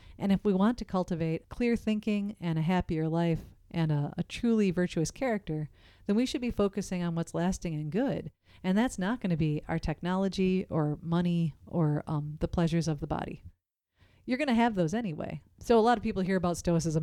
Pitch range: 170-210 Hz